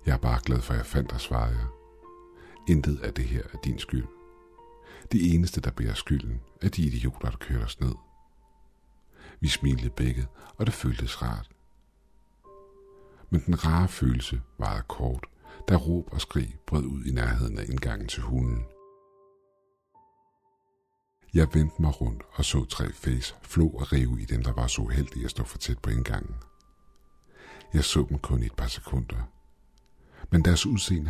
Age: 60-79